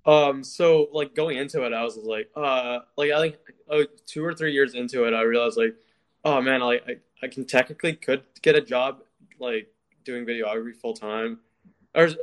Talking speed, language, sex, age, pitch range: 195 wpm, English, male, 20-39, 120-155 Hz